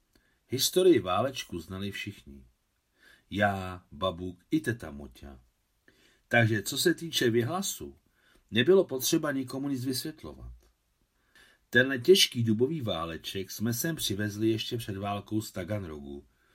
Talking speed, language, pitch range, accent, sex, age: 110 wpm, Czech, 95-130 Hz, native, male, 50-69